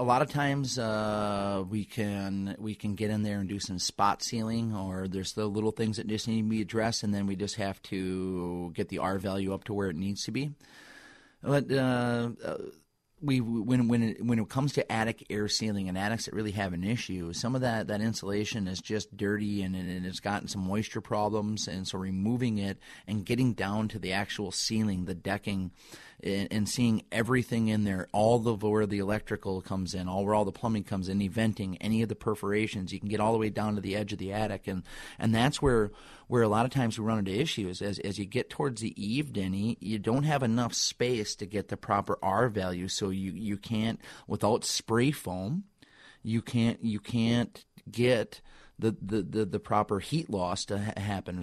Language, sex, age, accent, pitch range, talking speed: English, male, 30-49, American, 100-115 Hz, 215 wpm